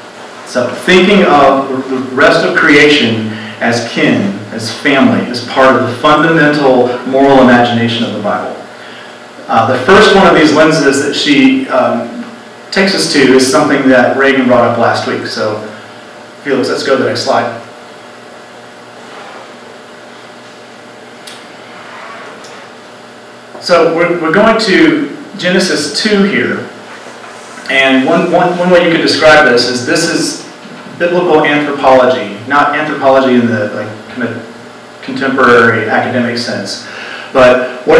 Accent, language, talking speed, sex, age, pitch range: American, English, 135 wpm, male, 40-59, 115-155 Hz